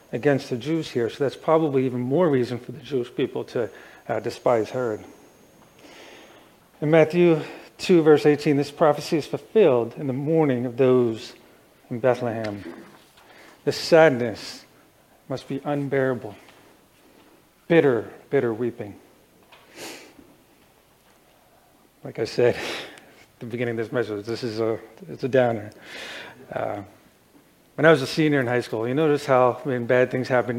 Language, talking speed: English, 145 wpm